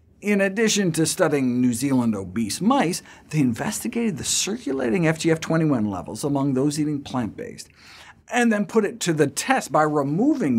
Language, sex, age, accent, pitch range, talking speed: English, male, 50-69, American, 125-190 Hz, 155 wpm